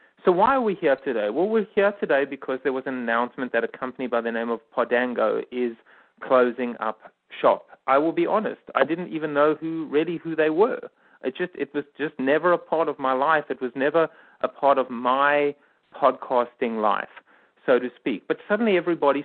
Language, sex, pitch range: English, male, 130-165 Hz